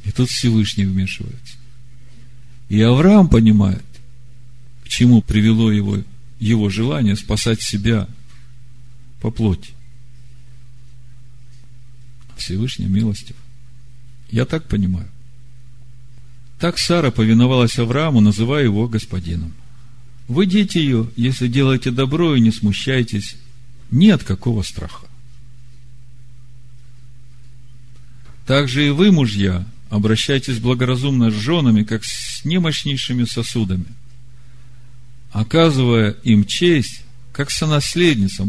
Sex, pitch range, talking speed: male, 115-125 Hz, 90 wpm